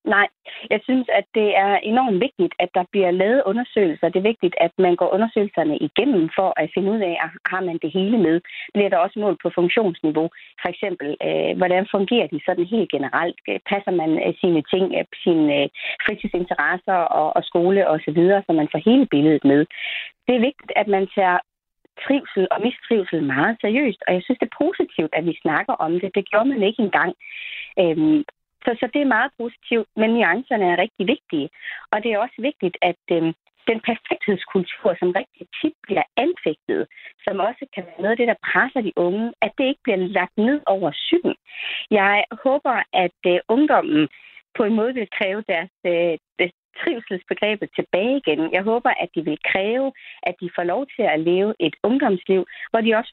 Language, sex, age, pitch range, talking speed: Danish, female, 30-49, 175-240 Hz, 185 wpm